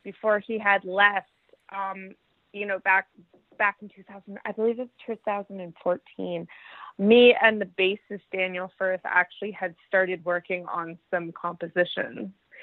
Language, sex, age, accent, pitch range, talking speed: English, female, 20-39, American, 180-205 Hz, 135 wpm